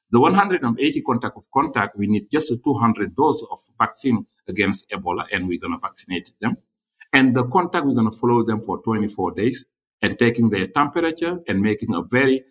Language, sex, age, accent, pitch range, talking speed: English, male, 60-79, Nigerian, 110-180 Hz, 185 wpm